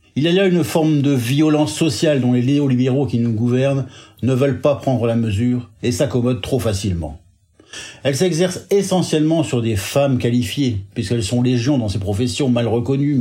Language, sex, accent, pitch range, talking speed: French, male, French, 110-150 Hz, 180 wpm